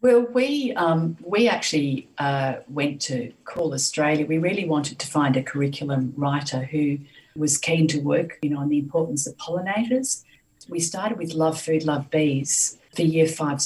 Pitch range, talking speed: 145-170 Hz, 175 wpm